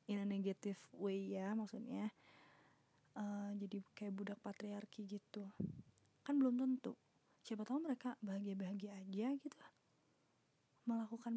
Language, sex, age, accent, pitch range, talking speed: Indonesian, female, 20-39, native, 205-225 Hz, 120 wpm